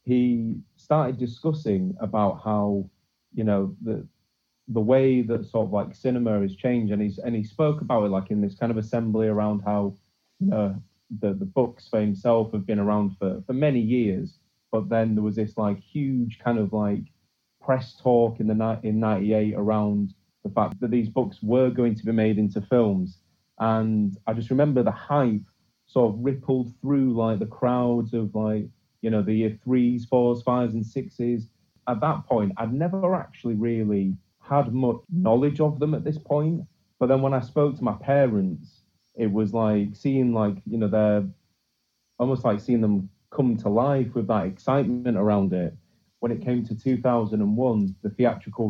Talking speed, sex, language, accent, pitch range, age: 185 wpm, male, English, British, 105-130 Hz, 30-49